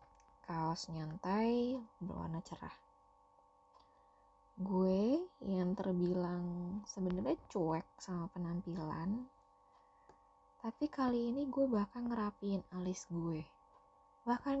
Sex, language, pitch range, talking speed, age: female, Indonesian, 155-205 Hz, 80 wpm, 20-39